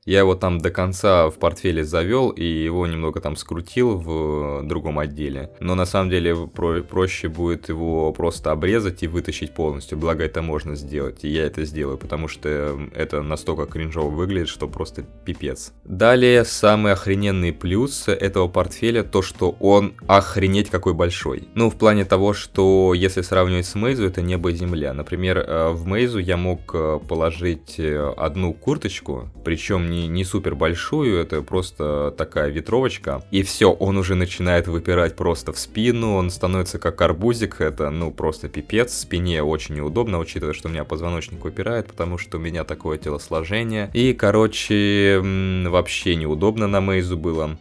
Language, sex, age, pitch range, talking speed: Russian, male, 20-39, 80-95 Hz, 160 wpm